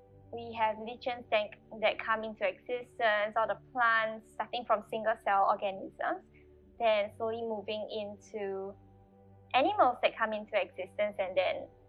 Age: 10-29